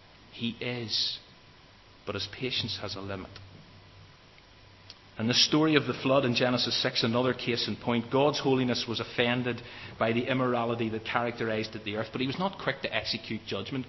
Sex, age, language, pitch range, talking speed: male, 30-49, English, 100-120 Hz, 175 wpm